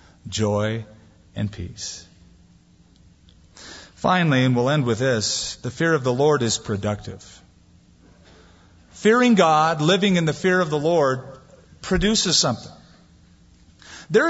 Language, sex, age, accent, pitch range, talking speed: English, male, 40-59, American, 105-160 Hz, 120 wpm